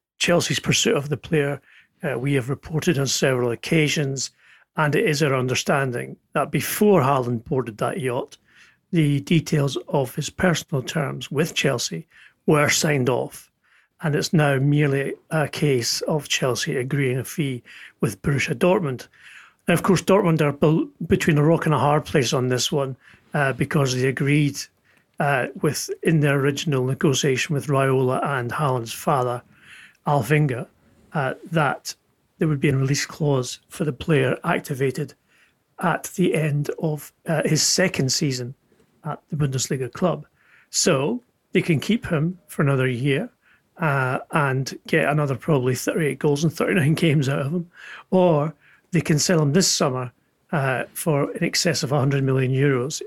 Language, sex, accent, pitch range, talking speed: English, male, British, 135-160 Hz, 160 wpm